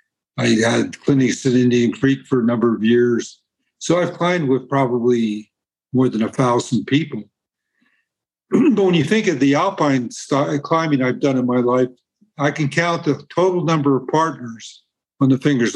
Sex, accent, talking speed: male, American, 170 wpm